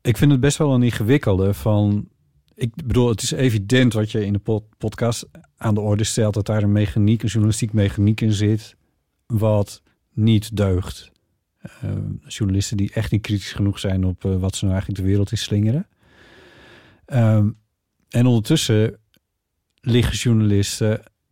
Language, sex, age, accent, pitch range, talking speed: Dutch, male, 50-69, Dutch, 95-115 Hz, 160 wpm